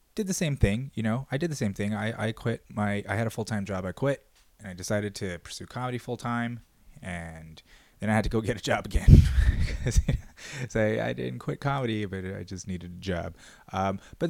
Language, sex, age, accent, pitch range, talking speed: English, male, 20-39, American, 95-120 Hz, 225 wpm